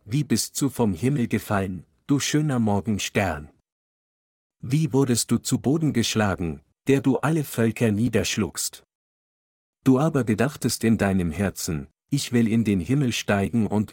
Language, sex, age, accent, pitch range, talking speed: German, male, 50-69, German, 100-125 Hz, 140 wpm